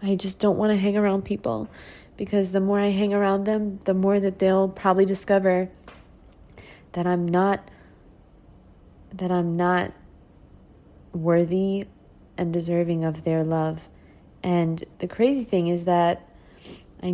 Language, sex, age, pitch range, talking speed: English, female, 30-49, 170-195 Hz, 140 wpm